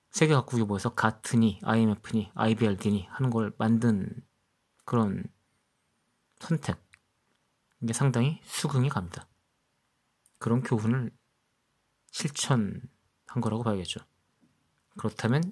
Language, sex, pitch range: Korean, male, 110-145 Hz